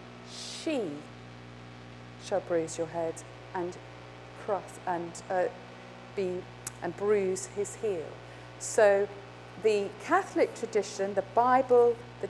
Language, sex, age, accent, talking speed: English, female, 40-59, British, 100 wpm